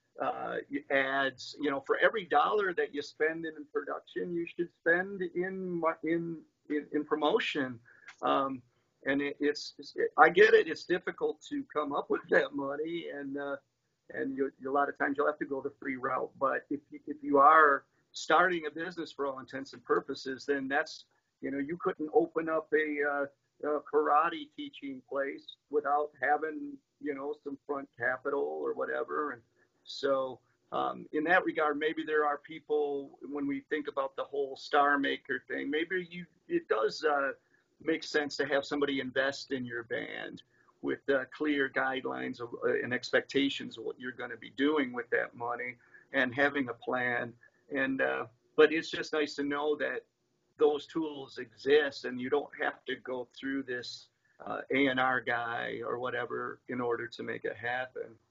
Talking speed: 180 wpm